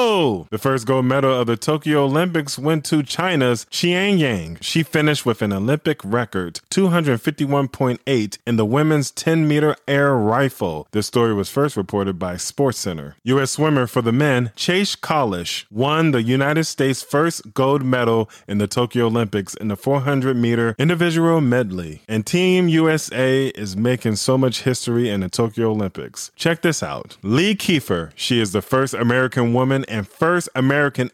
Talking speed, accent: 160 wpm, American